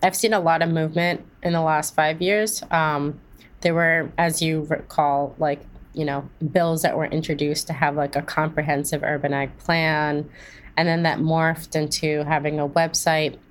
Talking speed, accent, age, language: 180 wpm, American, 20-39, English